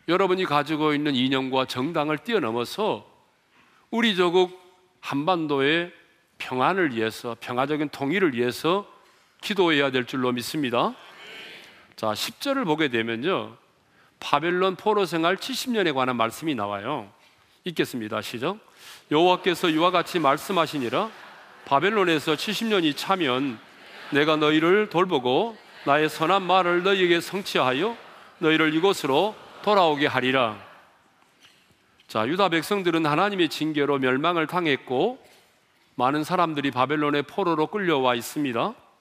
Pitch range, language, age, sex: 145-200 Hz, Korean, 40-59, male